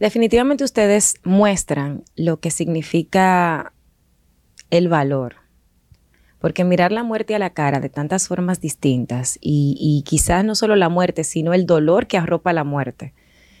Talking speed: 145 wpm